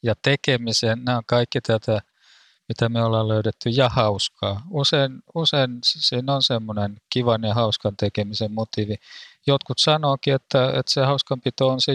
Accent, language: native, Finnish